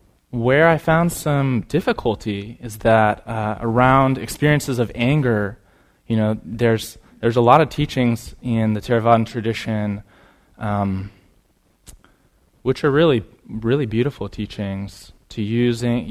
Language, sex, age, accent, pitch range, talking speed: English, male, 20-39, American, 100-120 Hz, 125 wpm